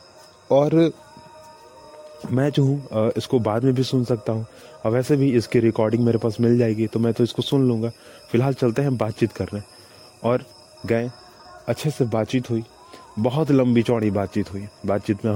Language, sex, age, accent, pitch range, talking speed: Hindi, male, 30-49, native, 110-130 Hz, 170 wpm